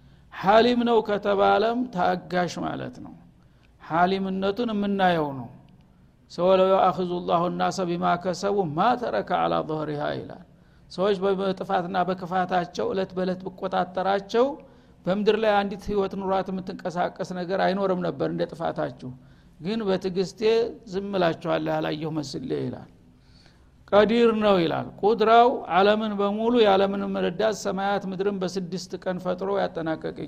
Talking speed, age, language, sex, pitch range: 115 wpm, 50-69, Amharic, male, 175-210 Hz